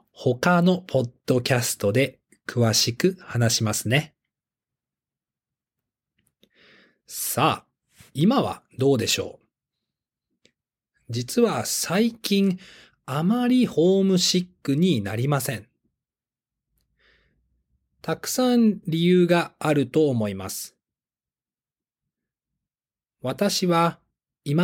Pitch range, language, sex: 115-180 Hz, Japanese, male